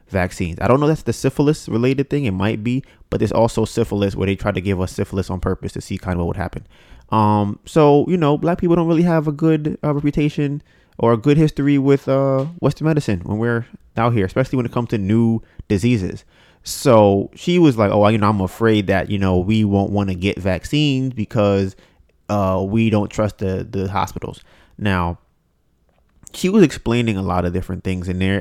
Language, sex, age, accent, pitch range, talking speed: English, male, 20-39, American, 95-130 Hz, 215 wpm